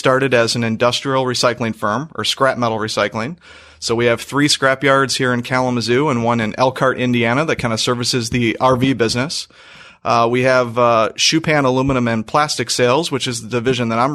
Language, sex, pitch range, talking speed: English, male, 115-130 Hz, 185 wpm